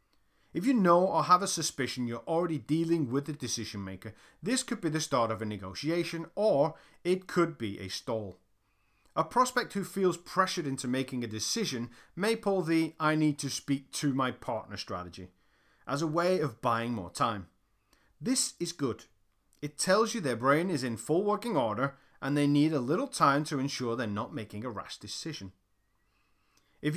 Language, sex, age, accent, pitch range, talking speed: English, male, 30-49, British, 115-180 Hz, 185 wpm